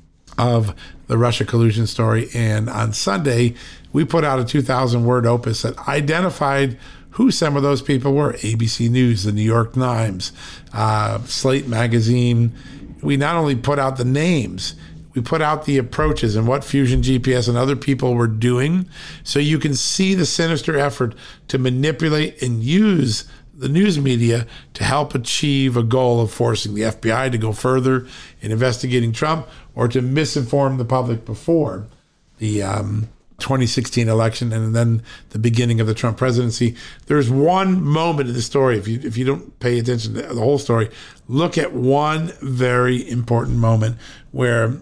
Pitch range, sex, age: 115-145 Hz, male, 50-69